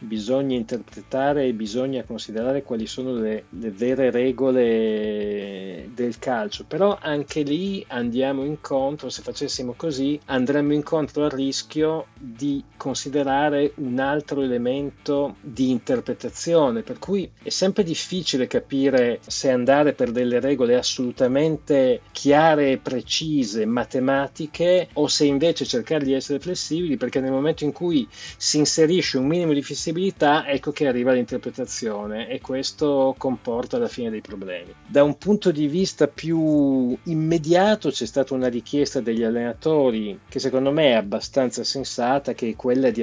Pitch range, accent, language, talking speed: 120-155 Hz, native, Italian, 140 wpm